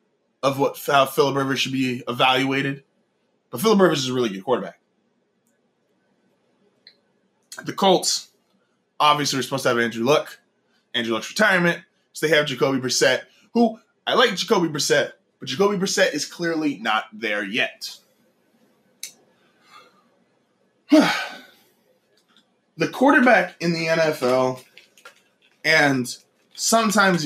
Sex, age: male, 20-39